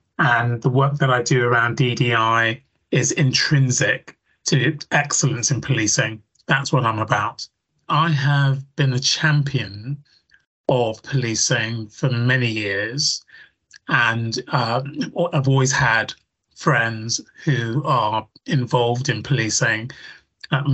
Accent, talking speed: British, 115 wpm